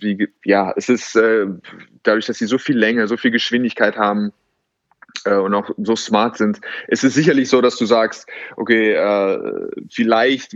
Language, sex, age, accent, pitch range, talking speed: German, male, 20-39, German, 100-125 Hz, 175 wpm